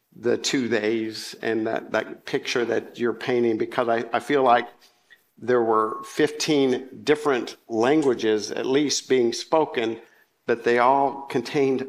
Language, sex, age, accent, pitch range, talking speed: English, male, 50-69, American, 115-135 Hz, 140 wpm